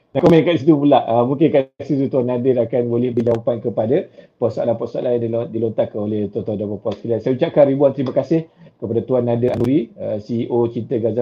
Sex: male